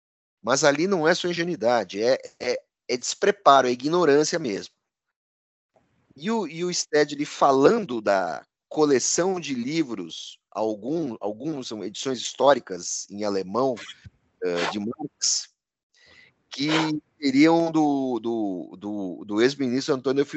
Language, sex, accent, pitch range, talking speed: Portuguese, male, Brazilian, 110-175 Hz, 120 wpm